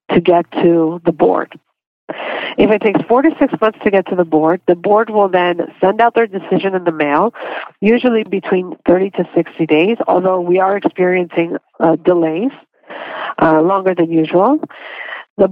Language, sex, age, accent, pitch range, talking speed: English, female, 50-69, American, 175-220 Hz, 175 wpm